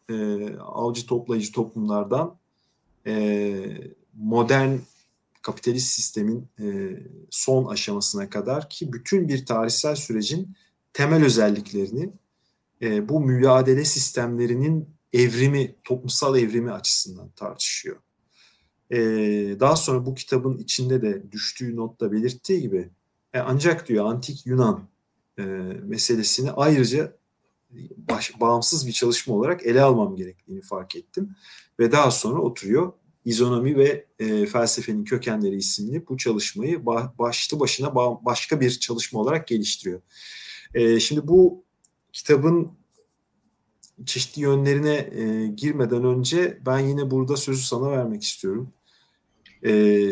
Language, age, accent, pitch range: Turkish, 40-59, native, 115-145 Hz